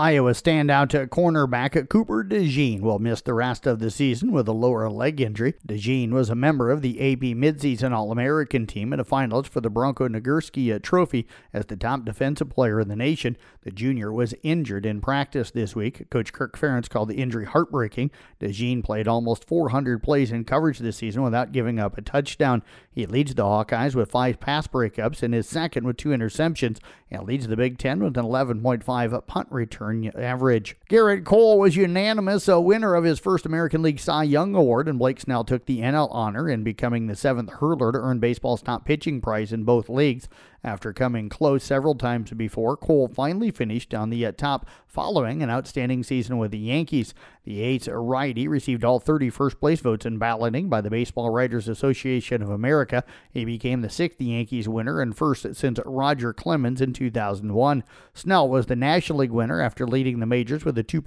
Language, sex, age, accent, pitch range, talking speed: English, male, 50-69, American, 115-145 Hz, 195 wpm